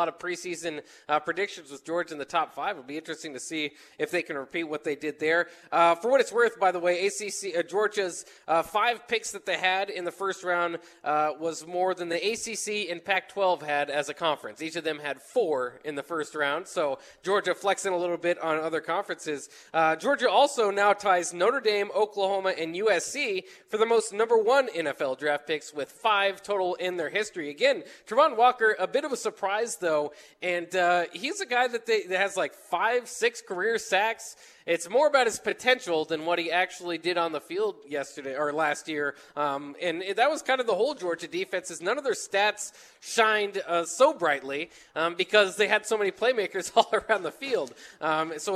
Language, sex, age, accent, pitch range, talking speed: English, male, 20-39, American, 165-215 Hz, 210 wpm